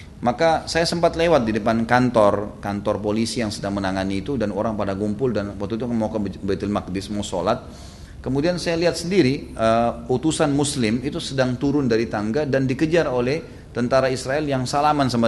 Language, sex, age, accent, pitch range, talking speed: Indonesian, male, 30-49, native, 100-145 Hz, 180 wpm